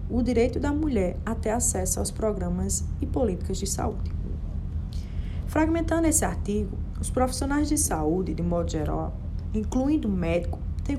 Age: 20-39